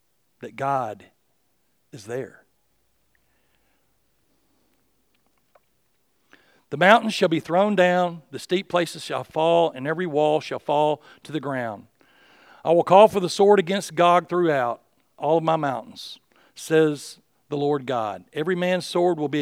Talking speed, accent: 140 wpm, American